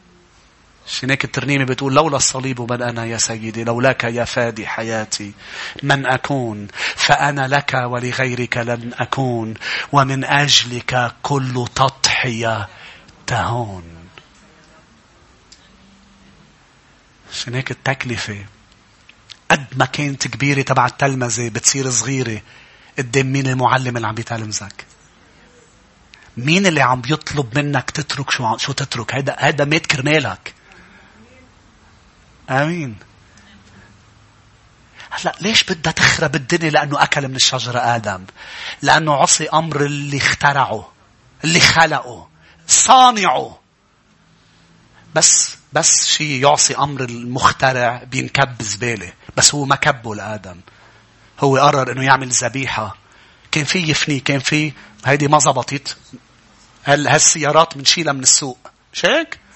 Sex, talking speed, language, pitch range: male, 105 wpm, English, 115-140 Hz